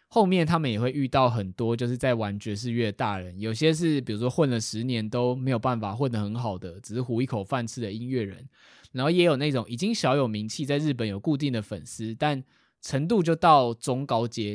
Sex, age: male, 20-39